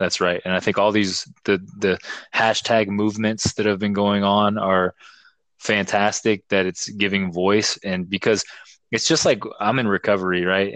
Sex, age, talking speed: male, 20-39, 175 wpm